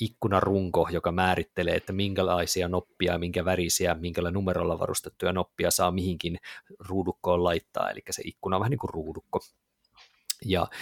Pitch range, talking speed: 85-110 Hz, 140 wpm